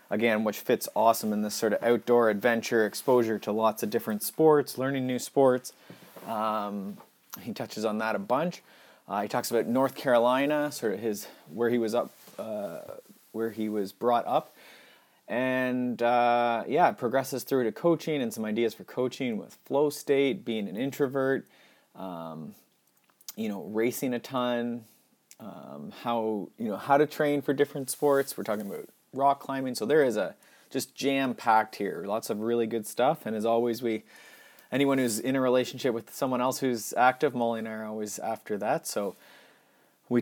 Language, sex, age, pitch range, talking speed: English, male, 30-49, 110-135 Hz, 180 wpm